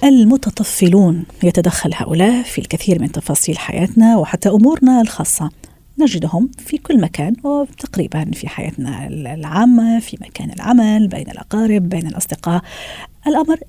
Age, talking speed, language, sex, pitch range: 40-59, 120 wpm, Arabic, female, 175-240 Hz